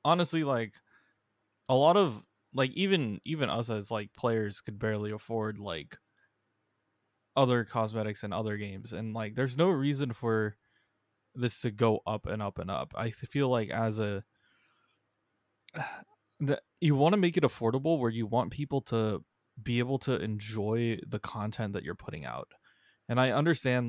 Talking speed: 165 wpm